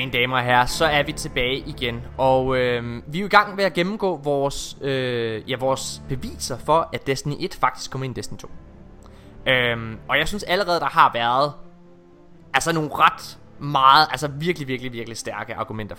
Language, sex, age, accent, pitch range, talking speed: Danish, male, 20-39, native, 120-165 Hz, 190 wpm